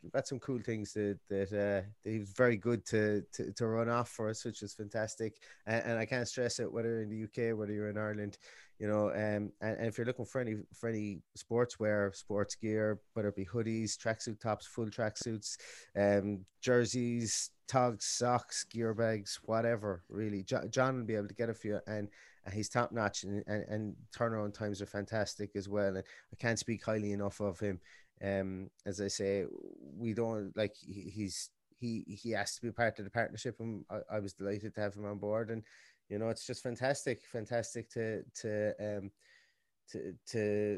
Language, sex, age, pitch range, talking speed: English, male, 30-49, 100-115 Hz, 200 wpm